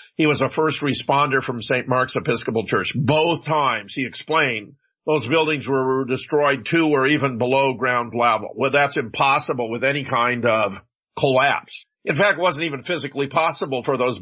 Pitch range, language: 135-160 Hz, English